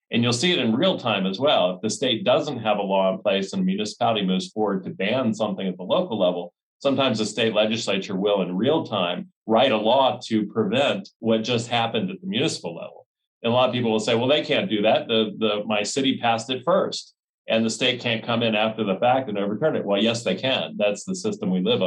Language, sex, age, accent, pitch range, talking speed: English, male, 40-59, American, 105-130 Hz, 245 wpm